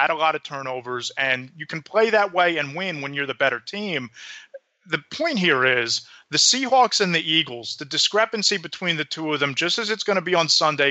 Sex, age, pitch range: male, 30-49, 145-185 Hz